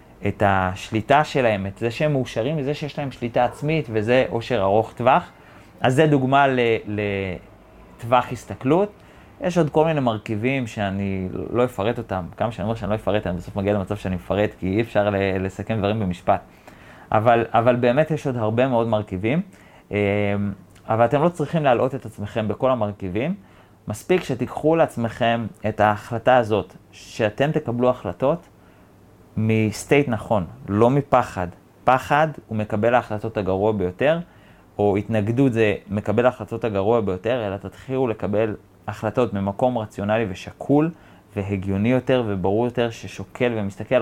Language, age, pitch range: Hebrew, 30-49, 100-125 Hz